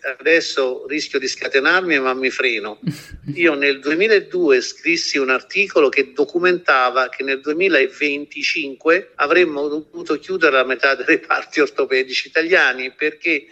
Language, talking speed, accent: Italian, 125 wpm, native